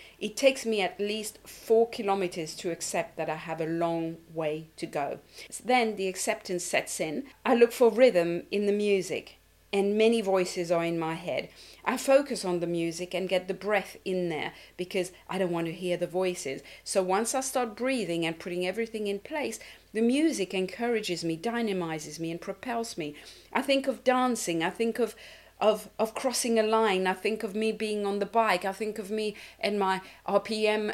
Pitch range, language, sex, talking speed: 180-235 Hz, English, female, 195 wpm